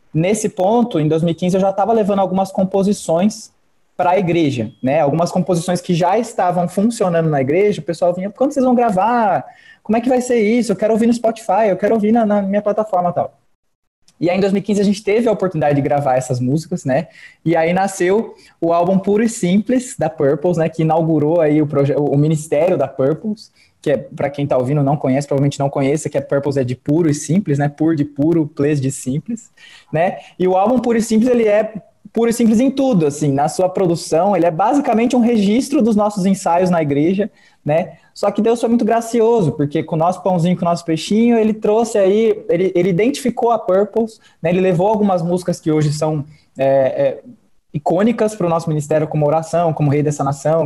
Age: 20-39